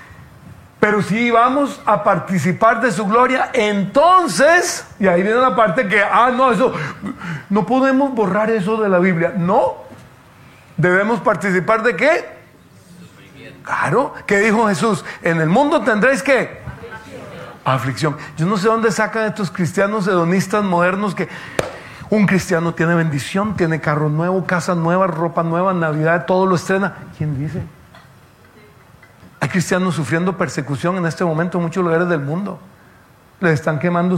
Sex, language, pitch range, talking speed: male, Spanish, 165-215 Hz, 145 wpm